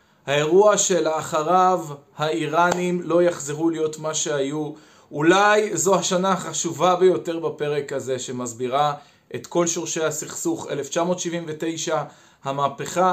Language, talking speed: Hebrew, 100 wpm